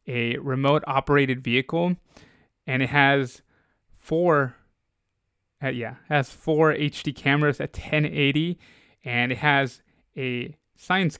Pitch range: 125-150 Hz